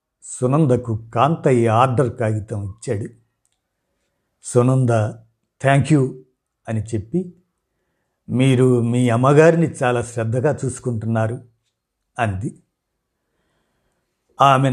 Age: 50-69